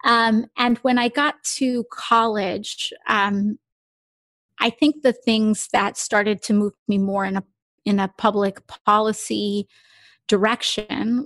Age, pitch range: 30-49, 195-235 Hz